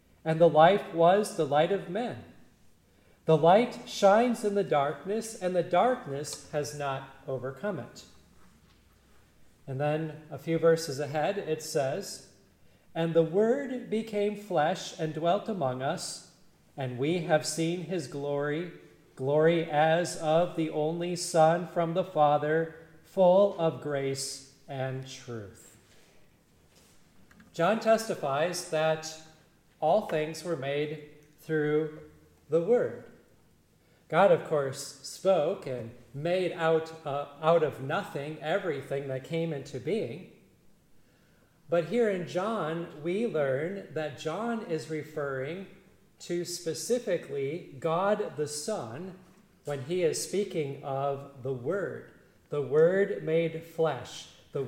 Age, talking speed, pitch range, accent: 40-59, 120 wpm, 145-185 Hz, American